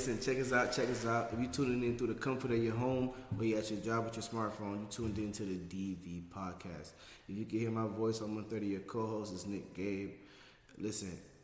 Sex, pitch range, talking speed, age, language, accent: male, 100-120 Hz, 255 wpm, 20-39, English, American